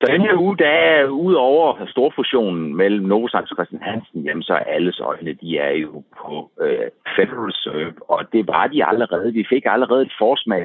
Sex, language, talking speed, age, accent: male, Danish, 195 wpm, 60-79, native